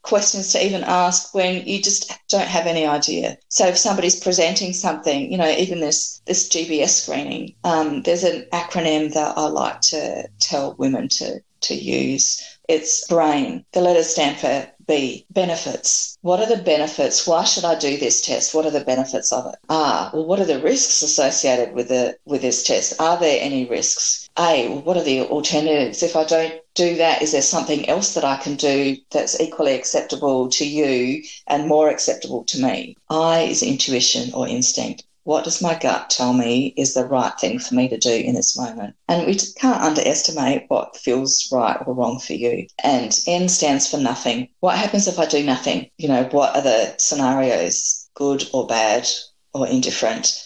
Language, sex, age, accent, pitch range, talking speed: English, female, 40-59, Australian, 140-180 Hz, 190 wpm